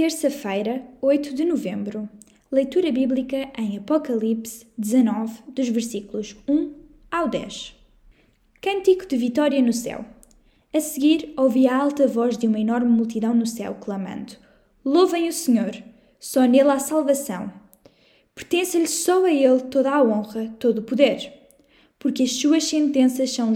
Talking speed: 140 wpm